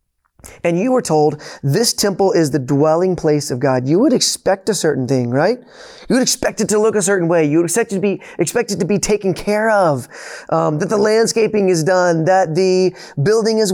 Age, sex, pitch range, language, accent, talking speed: 20-39, male, 150-195 Hz, English, American, 220 wpm